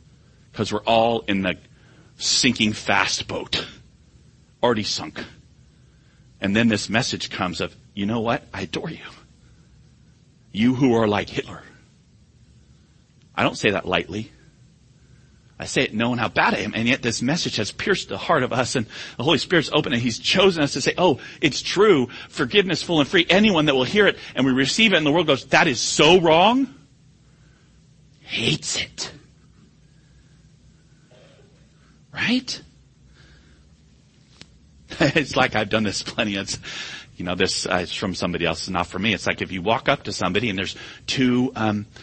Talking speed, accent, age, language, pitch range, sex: 170 wpm, American, 40-59, English, 95-140 Hz, male